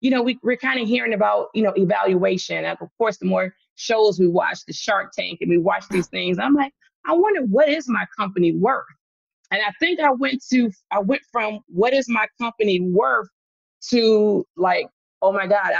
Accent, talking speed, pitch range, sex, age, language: American, 210 wpm, 195-255 Hz, female, 30-49, English